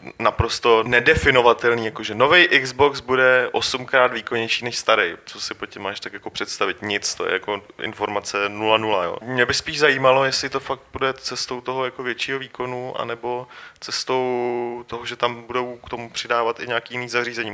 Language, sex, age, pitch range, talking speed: Czech, male, 30-49, 110-130 Hz, 175 wpm